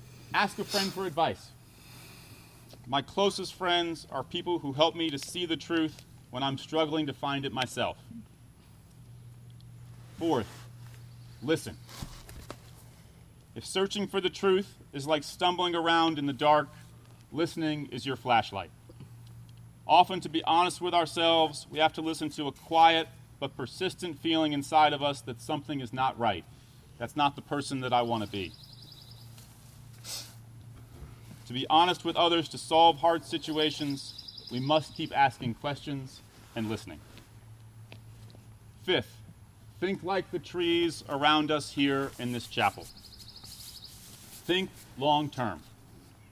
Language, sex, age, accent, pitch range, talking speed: English, male, 40-59, American, 120-165 Hz, 135 wpm